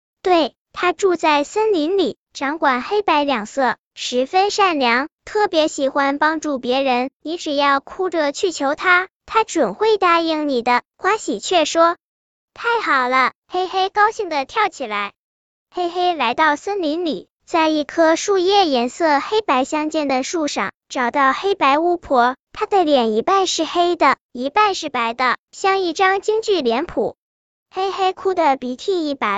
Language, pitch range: Chinese, 275-370 Hz